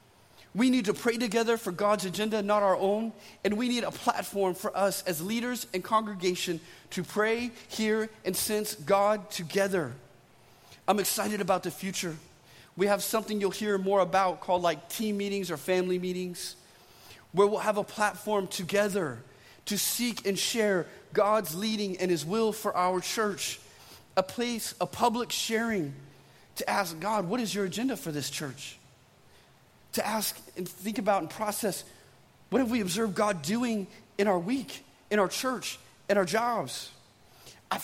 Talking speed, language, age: 165 wpm, English, 30-49